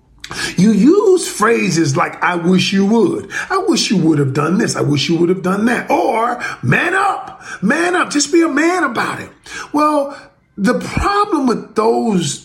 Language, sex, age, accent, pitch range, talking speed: English, male, 40-59, American, 160-235 Hz, 185 wpm